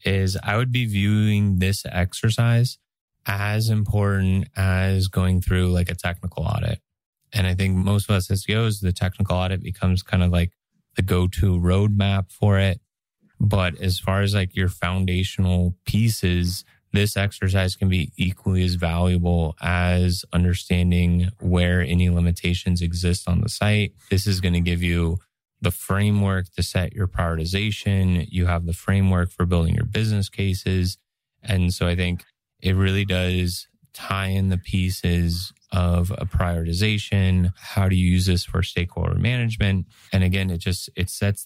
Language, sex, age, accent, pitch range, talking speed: English, male, 20-39, American, 90-100 Hz, 160 wpm